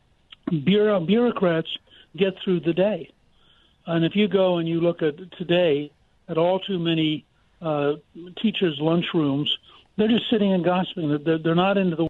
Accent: American